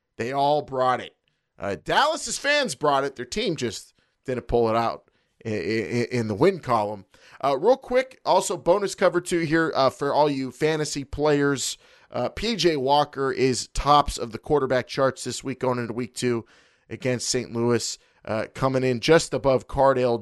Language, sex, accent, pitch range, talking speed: English, male, American, 115-140 Hz, 180 wpm